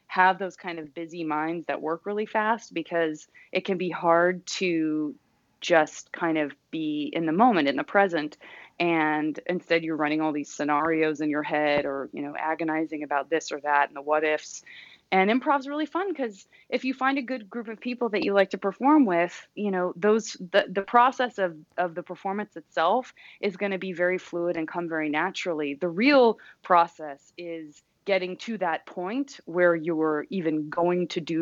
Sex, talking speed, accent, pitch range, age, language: female, 195 wpm, American, 155-190 Hz, 20-39, English